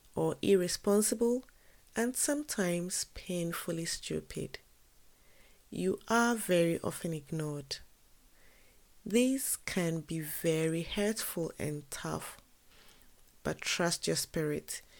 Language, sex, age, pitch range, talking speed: English, female, 30-49, 165-205 Hz, 90 wpm